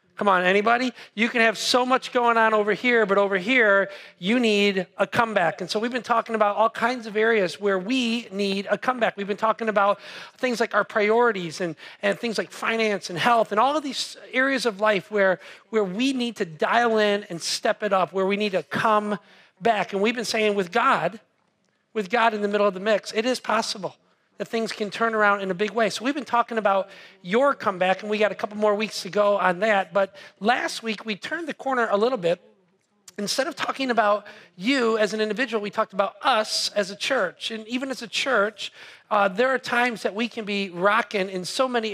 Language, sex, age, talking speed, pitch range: English, male, 40-59, 225 wpm, 200-235 Hz